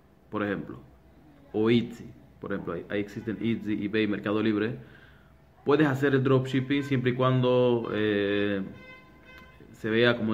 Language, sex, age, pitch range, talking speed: Spanish, male, 30-49, 105-130 Hz, 140 wpm